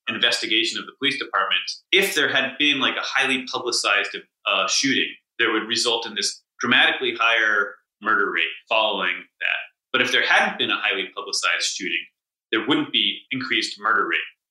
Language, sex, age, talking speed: English, male, 30-49, 170 wpm